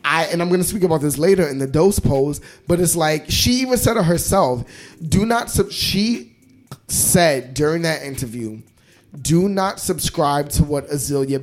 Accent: American